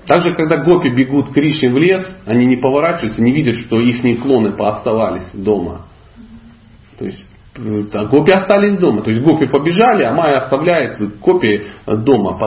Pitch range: 110-160 Hz